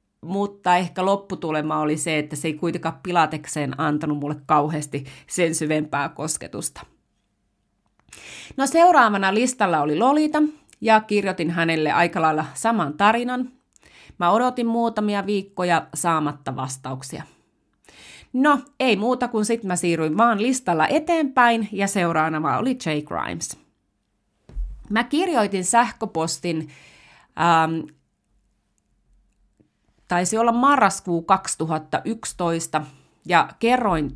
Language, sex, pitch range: Finnish, female, 150-220 Hz